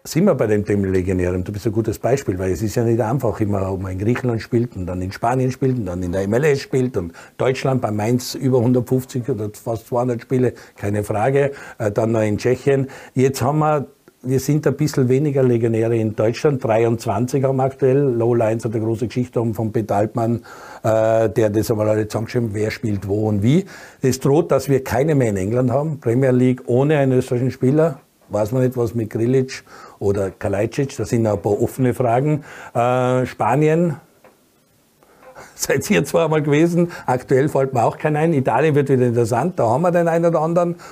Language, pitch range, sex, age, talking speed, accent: German, 115-135 Hz, male, 60-79, 200 wpm, Austrian